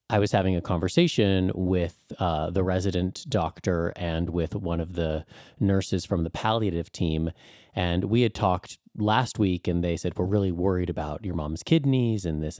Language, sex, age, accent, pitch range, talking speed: English, male, 30-49, American, 85-105 Hz, 180 wpm